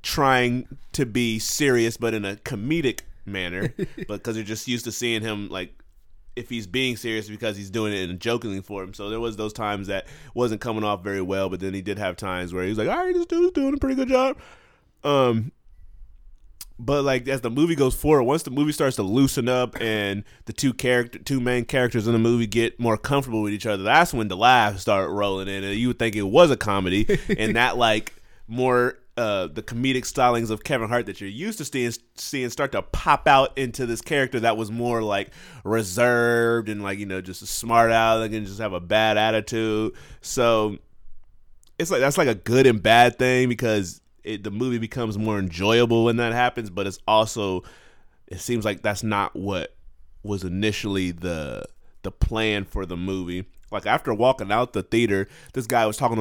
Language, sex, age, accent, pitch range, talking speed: English, male, 30-49, American, 100-125 Hz, 210 wpm